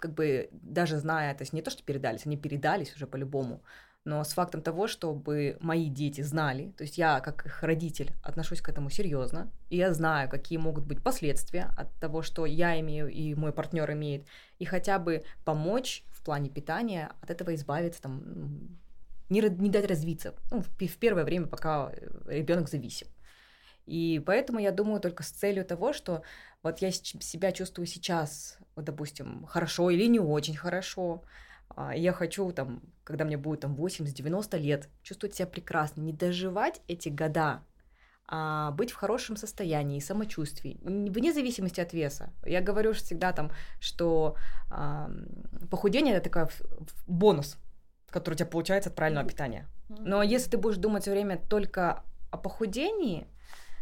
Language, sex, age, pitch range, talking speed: Russian, female, 20-39, 150-190 Hz, 155 wpm